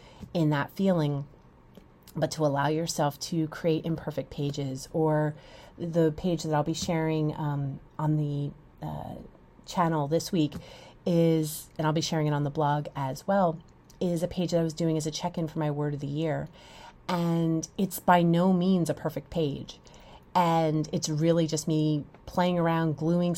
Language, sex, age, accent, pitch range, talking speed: English, female, 30-49, American, 150-170 Hz, 175 wpm